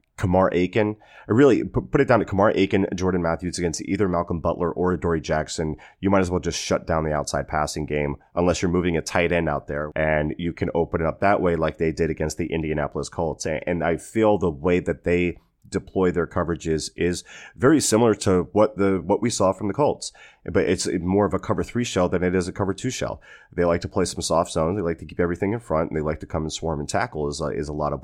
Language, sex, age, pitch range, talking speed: English, male, 30-49, 80-90 Hz, 255 wpm